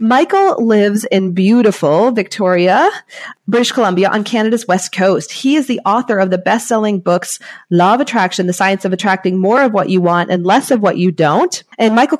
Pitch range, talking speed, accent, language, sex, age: 185-235 Hz, 195 wpm, American, English, female, 30-49